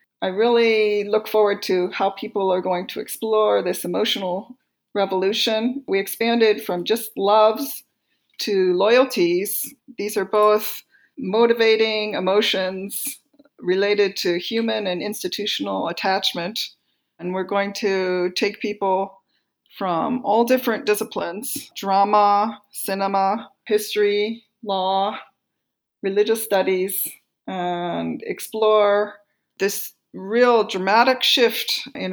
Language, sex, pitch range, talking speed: English, female, 185-220 Hz, 105 wpm